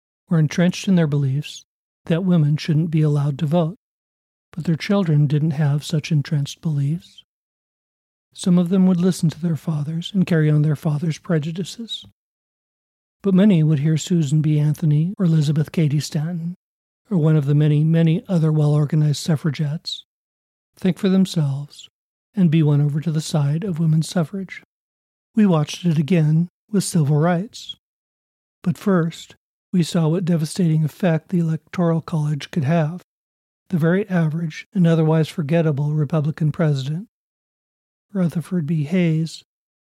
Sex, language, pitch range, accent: male, English, 150-175 Hz, American